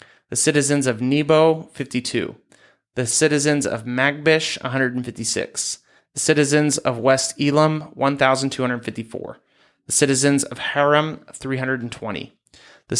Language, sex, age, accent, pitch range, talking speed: English, male, 30-49, American, 125-150 Hz, 100 wpm